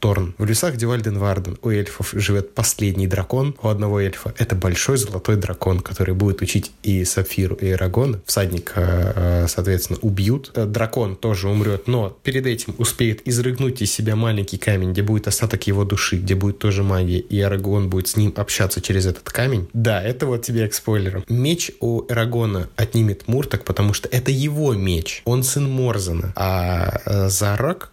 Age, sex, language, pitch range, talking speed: 20-39, male, Russian, 95-120 Hz, 165 wpm